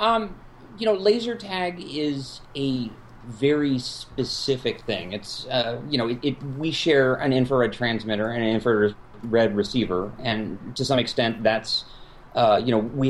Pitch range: 110-135 Hz